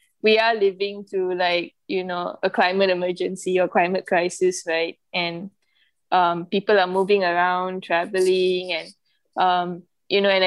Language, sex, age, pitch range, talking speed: English, female, 10-29, 180-205 Hz, 150 wpm